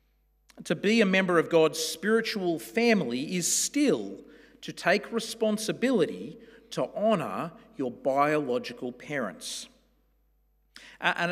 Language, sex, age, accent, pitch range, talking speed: English, male, 40-59, Australian, 160-230 Hz, 100 wpm